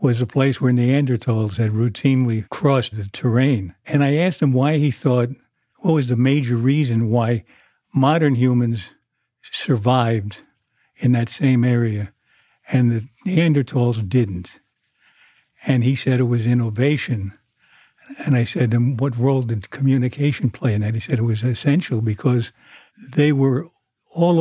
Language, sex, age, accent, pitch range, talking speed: English, male, 60-79, American, 115-140 Hz, 150 wpm